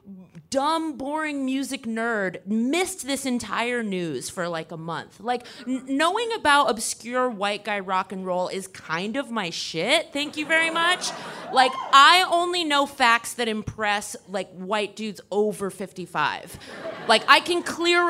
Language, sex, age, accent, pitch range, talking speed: English, female, 30-49, American, 200-295 Hz, 155 wpm